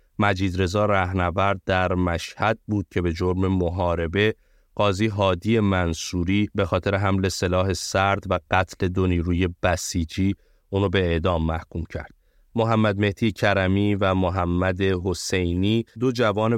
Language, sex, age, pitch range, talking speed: Persian, male, 30-49, 90-100 Hz, 130 wpm